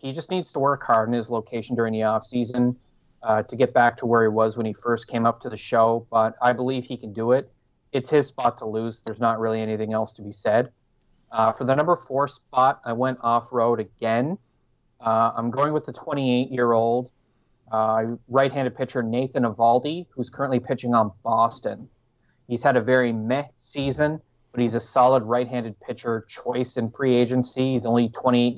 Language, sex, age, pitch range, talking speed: English, male, 30-49, 115-130 Hz, 190 wpm